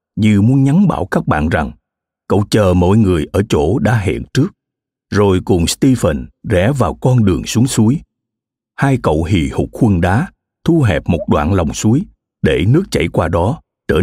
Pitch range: 95-130 Hz